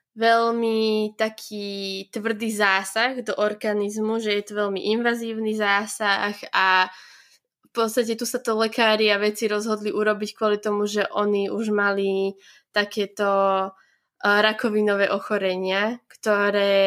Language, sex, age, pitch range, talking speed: Slovak, female, 20-39, 200-230 Hz, 115 wpm